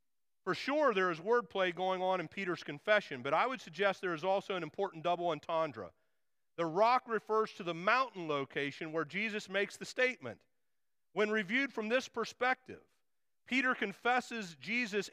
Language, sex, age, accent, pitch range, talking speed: English, male, 40-59, American, 170-210 Hz, 165 wpm